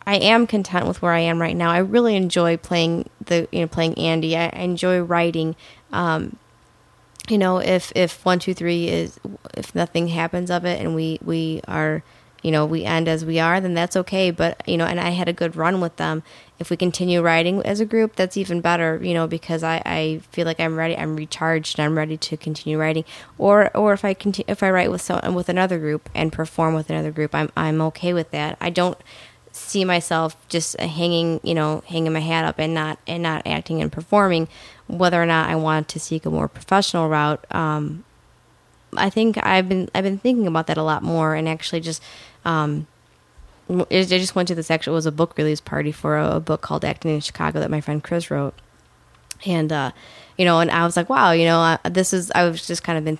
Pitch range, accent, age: 155-180 Hz, American, 20-39